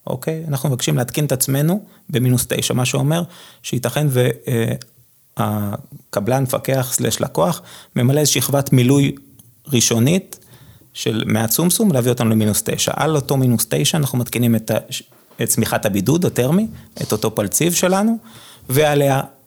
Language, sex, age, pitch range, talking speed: Hebrew, male, 30-49, 115-150 Hz, 135 wpm